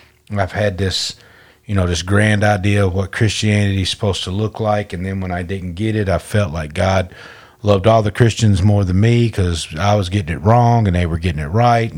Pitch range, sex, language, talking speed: 90-105 Hz, male, English, 230 wpm